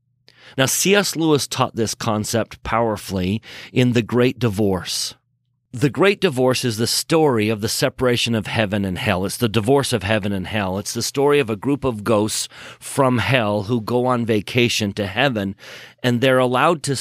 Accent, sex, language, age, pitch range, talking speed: American, male, English, 40-59, 110-140 Hz, 180 wpm